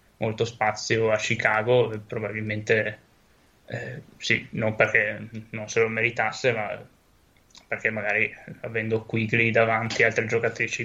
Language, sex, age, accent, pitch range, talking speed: Italian, male, 10-29, native, 110-115 Hz, 120 wpm